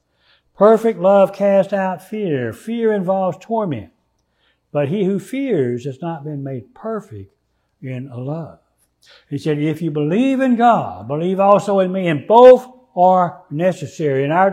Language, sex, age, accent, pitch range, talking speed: English, male, 60-79, American, 160-215 Hz, 150 wpm